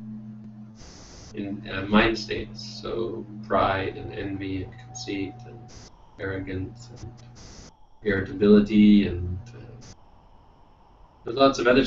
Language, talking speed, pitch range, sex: English, 95 wpm, 95-115 Hz, male